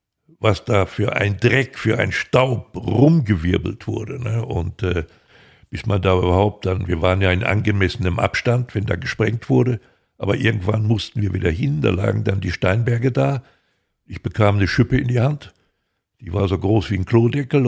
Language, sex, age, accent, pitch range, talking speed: German, male, 60-79, German, 90-115 Hz, 185 wpm